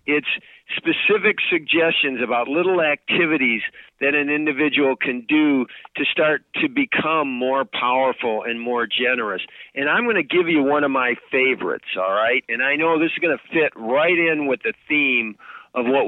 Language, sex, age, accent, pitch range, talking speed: English, male, 50-69, American, 125-160 Hz, 175 wpm